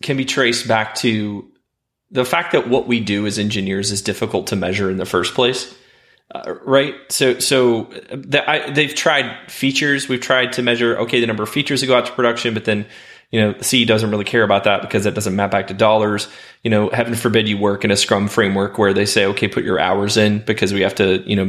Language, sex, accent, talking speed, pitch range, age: English, male, American, 230 wpm, 105-125 Hz, 20-39